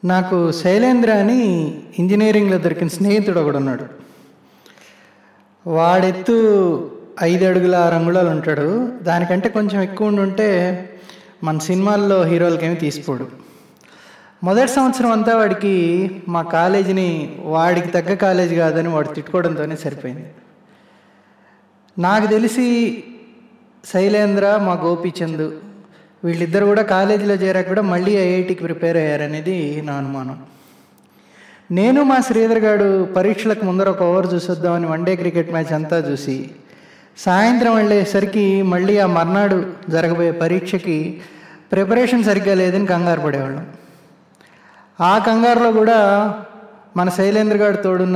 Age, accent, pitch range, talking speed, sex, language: 20-39, native, 170-205 Hz, 105 wpm, male, Telugu